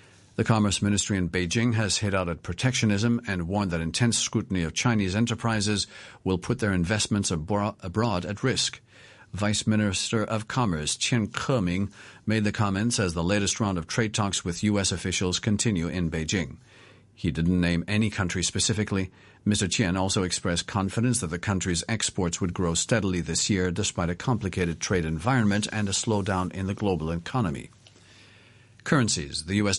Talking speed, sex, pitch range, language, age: 165 wpm, male, 90-110 Hz, English, 50-69